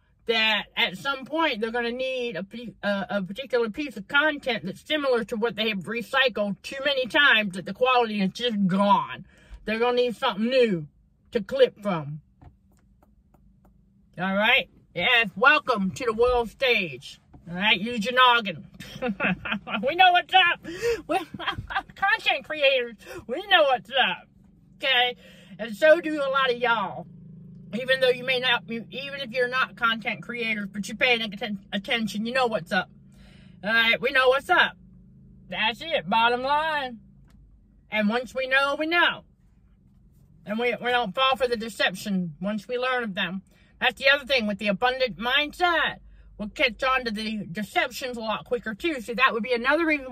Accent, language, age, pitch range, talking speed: American, English, 50-69, 205-260 Hz, 170 wpm